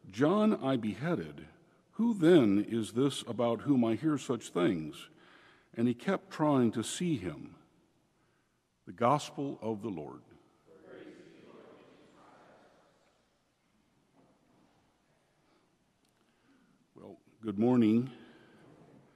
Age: 60-79